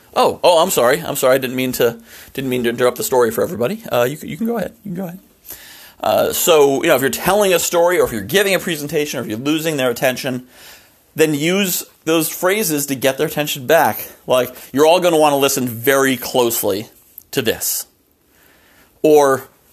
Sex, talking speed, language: male, 215 wpm, English